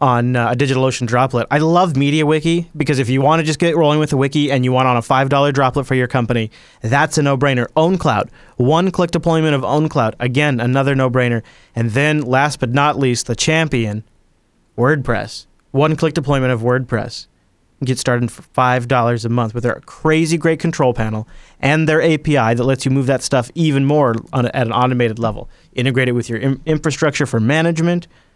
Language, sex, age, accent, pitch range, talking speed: English, male, 30-49, American, 115-145 Hz, 195 wpm